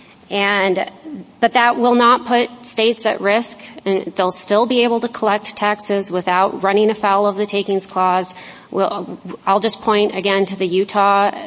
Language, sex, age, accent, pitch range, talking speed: English, female, 30-49, American, 180-215 Hz, 165 wpm